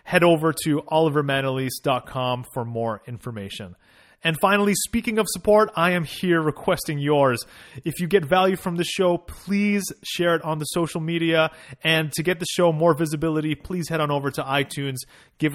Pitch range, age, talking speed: 130-175 Hz, 30-49, 175 wpm